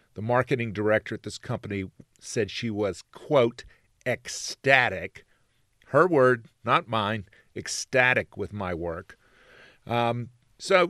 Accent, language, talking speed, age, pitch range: American, English, 115 wpm, 50-69, 100-125 Hz